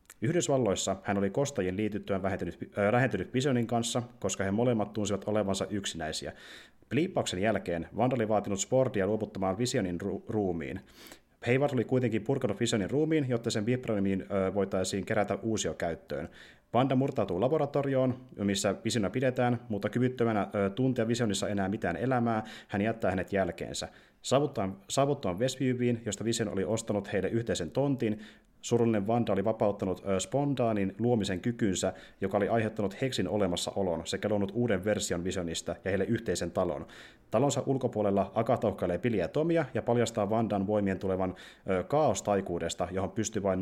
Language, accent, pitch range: Finnish, native, 95-120 Hz